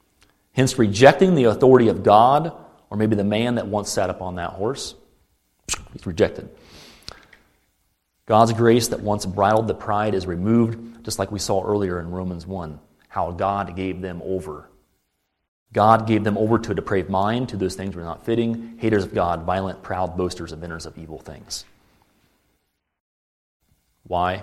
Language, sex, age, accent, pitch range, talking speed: English, male, 30-49, American, 85-105 Hz, 160 wpm